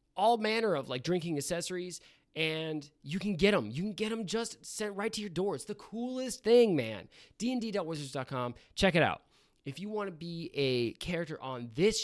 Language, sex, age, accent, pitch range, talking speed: English, male, 20-39, American, 130-175 Hz, 195 wpm